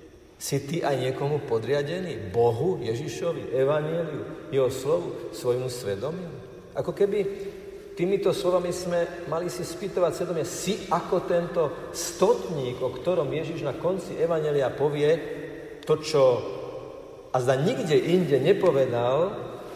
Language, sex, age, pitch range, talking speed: Slovak, male, 50-69, 125-200 Hz, 120 wpm